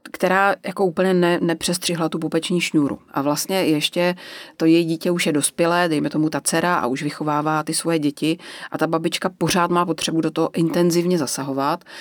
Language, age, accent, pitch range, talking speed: Czech, 30-49, native, 150-175 Hz, 185 wpm